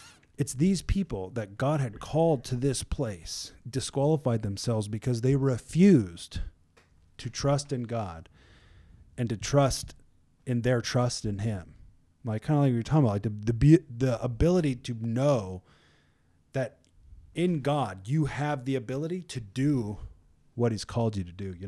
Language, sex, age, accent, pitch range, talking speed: English, male, 30-49, American, 110-160 Hz, 160 wpm